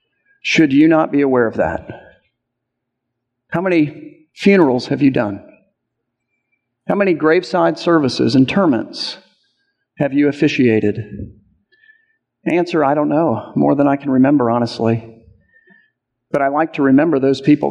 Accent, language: American, English